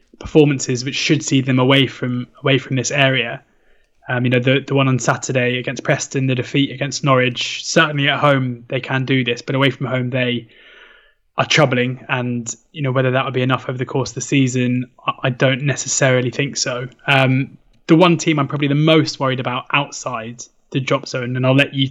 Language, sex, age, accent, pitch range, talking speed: English, male, 20-39, British, 125-140 Hz, 210 wpm